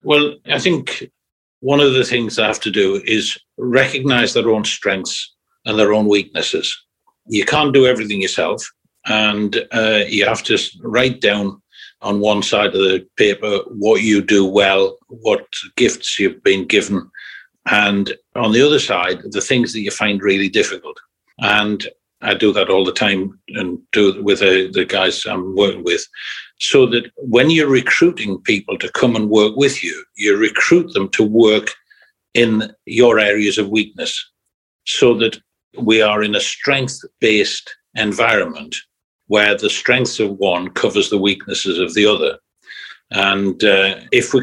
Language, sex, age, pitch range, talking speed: English, male, 60-79, 100-150 Hz, 165 wpm